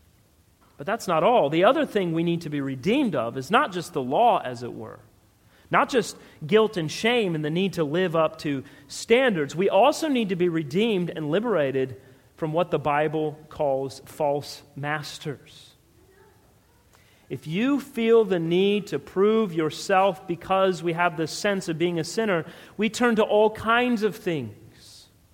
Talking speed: 175 wpm